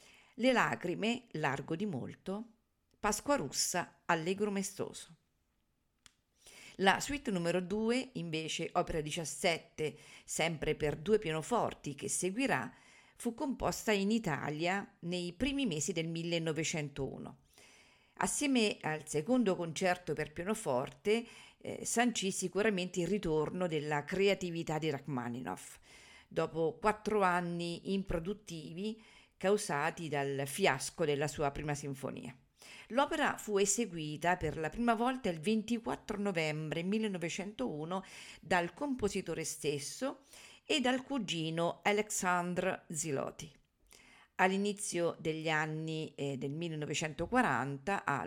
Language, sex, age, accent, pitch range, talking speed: Italian, female, 50-69, native, 155-210 Hz, 100 wpm